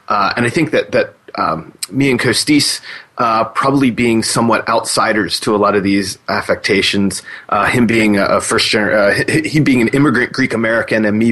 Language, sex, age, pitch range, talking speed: English, male, 30-49, 105-135 Hz, 190 wpm